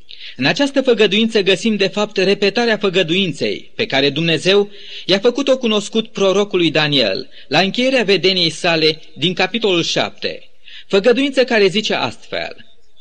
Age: 30-49